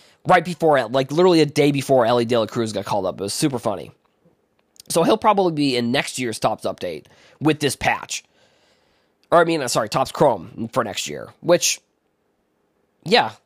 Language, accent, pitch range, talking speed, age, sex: English, American, 120-150 Hz, 185 wpm, 20-39, male